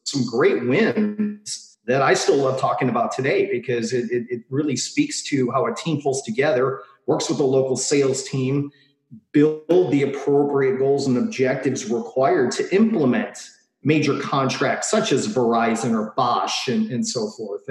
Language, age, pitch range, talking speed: English, 40-59, 130-165 Hz, 165 wpm